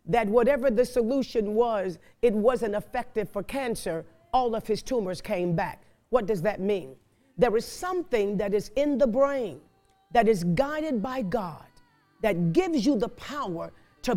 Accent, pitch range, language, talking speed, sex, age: American, 200-260 Hz, English, 165 wpm, female, 50-69